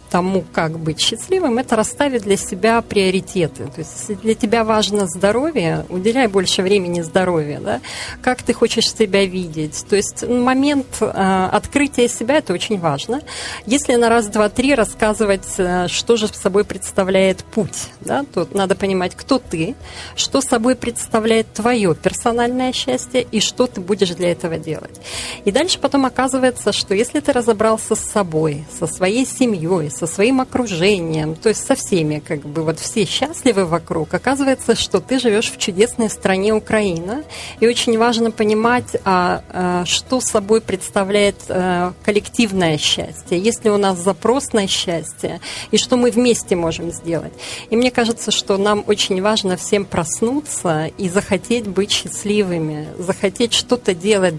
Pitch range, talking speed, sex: 180-235 Hz, 155 wpm, female